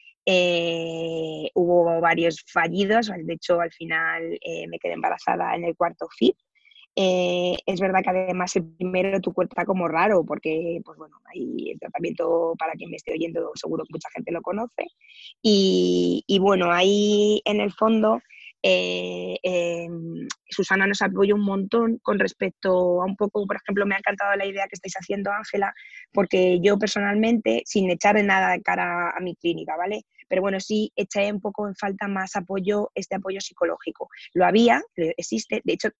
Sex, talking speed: female, 175 wpm